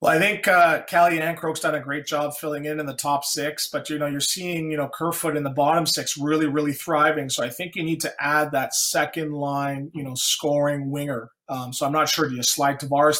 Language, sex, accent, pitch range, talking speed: English, male, American, 140-160 Hz, 245 wpm